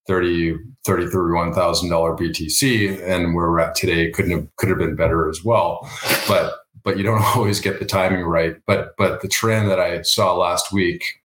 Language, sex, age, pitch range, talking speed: English, male, 40-59, 85-95 Hz, 185 wpm